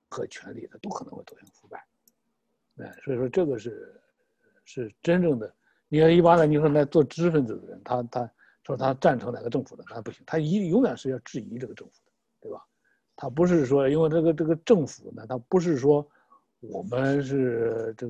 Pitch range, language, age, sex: 135-210 Hz, Chinese, 60-79, male